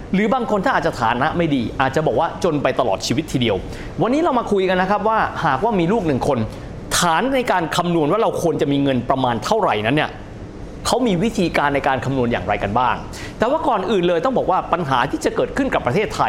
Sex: male